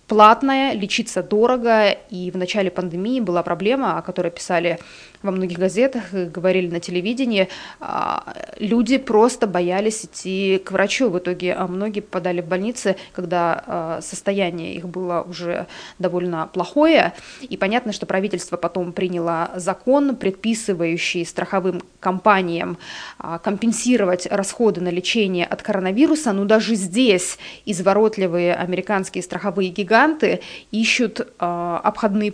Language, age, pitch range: Russian, 20-39, 180-225 Hz